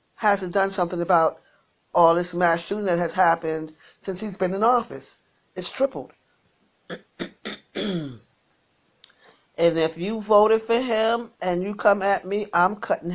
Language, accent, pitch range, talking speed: English, American, 180-245 Hz, 140 wpm